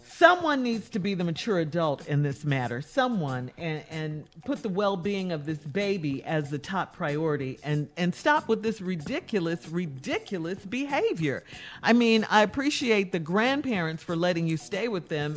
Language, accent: English, American